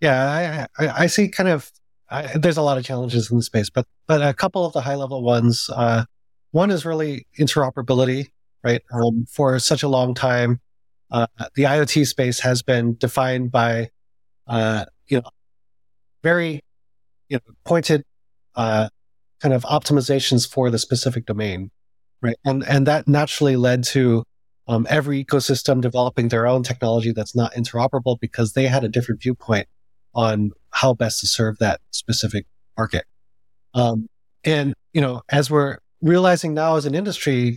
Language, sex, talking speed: English, male, 165 wpm